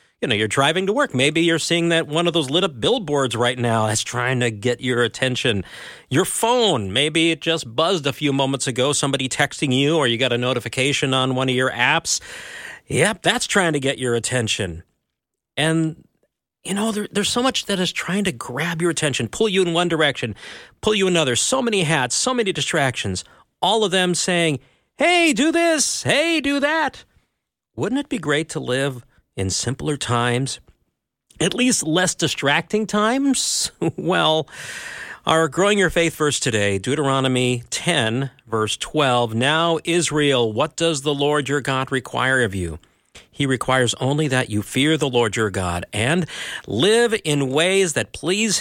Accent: American